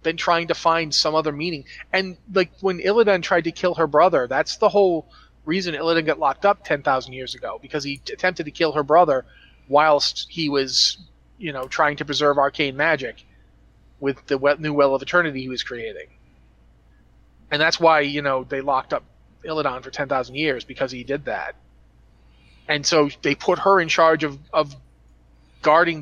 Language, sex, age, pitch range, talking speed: English, male, 30-49, 130-165 Hz, 180 wpm